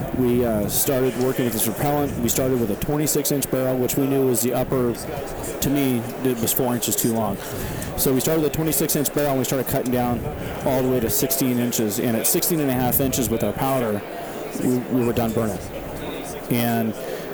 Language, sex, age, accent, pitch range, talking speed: English, male, 40-59, American, 115-135 Hz, 220 wpm